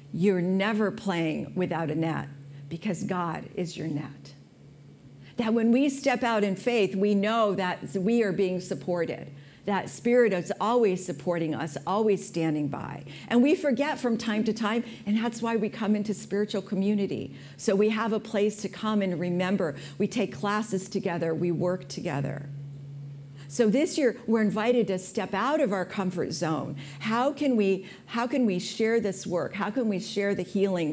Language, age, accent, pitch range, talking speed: English, 50-69, American, 160-215 Hz, 175 wpm